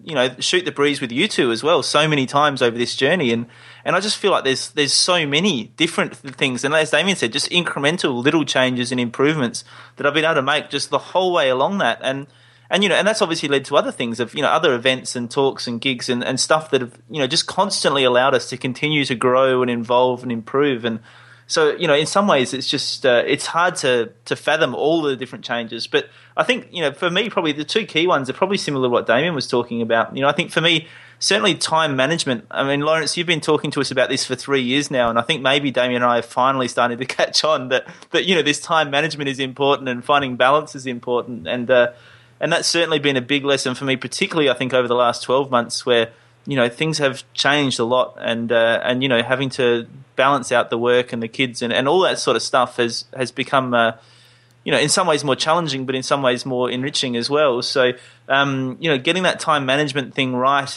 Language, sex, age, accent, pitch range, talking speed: English, male, 20-39, Australian, 125-150 Hz, 255 wpm